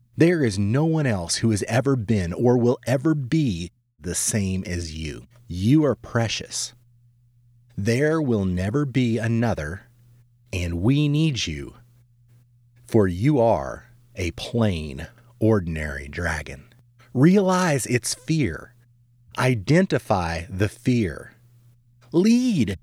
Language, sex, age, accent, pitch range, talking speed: English, male, 40-59, American, 100-125 Hz, 115 wpm